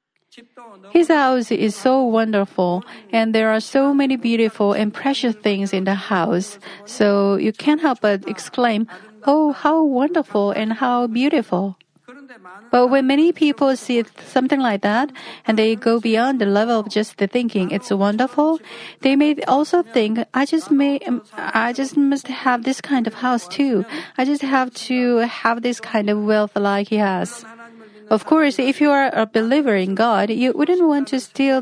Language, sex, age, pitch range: Korean, female, 40-59, 205-260 Hz